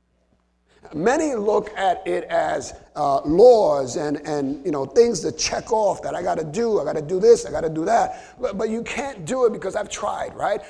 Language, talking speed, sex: English, 225 wpm, male